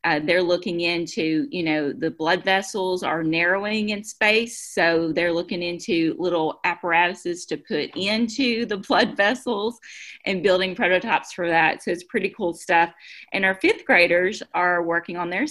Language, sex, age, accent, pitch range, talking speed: English, female, 30-49, American, 165-200 Hz, 165 wpm